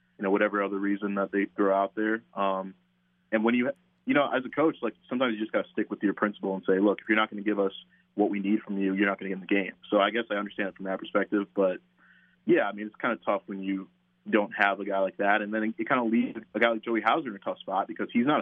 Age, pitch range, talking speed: 20-39, 95-110 Hz, 310 wpm